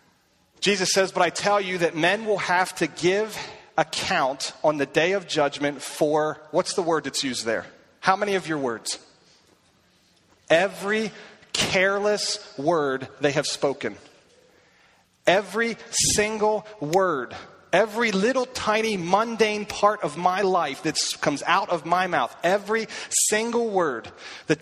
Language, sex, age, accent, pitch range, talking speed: English, male, 30-49, American, 150-200 Hz, 140 wpm